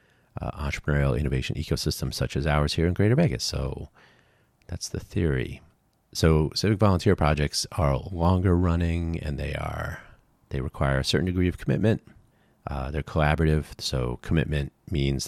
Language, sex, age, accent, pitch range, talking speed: English, male, 30-49, American, 70-95 Hz, 150 wpm